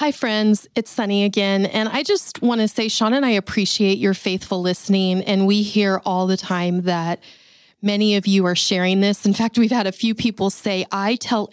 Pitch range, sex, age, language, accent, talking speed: 185-210 Hz, female, 30-49, English, American, 215 wpm